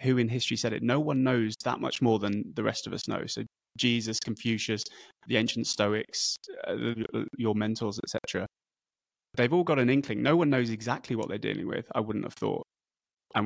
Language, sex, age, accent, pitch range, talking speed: English, male, 20-39, British, 110-130 Hz, 200 wpm